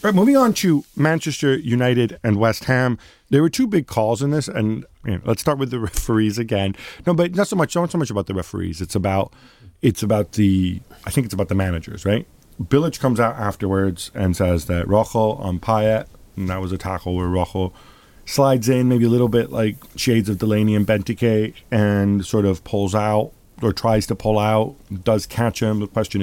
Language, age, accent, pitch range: English, 40-59, American, 95-115 Hz